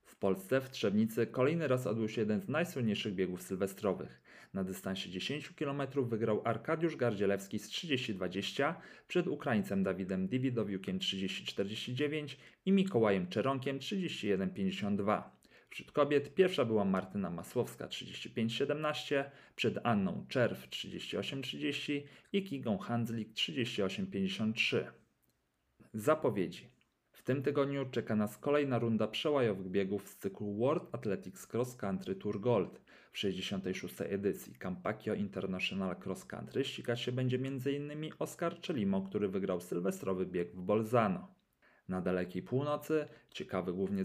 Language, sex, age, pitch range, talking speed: Polish, male, 40-59, 95-140 Hz, 120 wpm